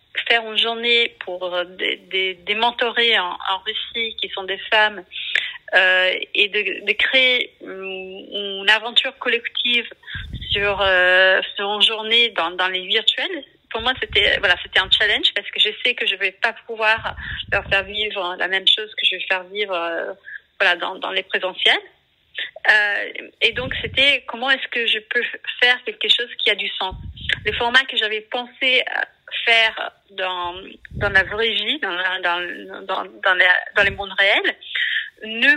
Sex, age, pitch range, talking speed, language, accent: female, 30-49, 195-250 Hz, 180 wpm, French, French